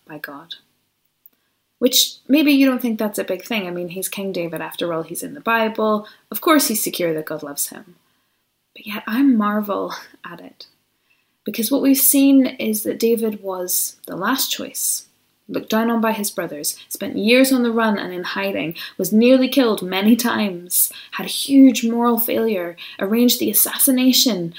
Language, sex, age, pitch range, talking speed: English, female, 20-39, 185-245 Hz, 180 wpm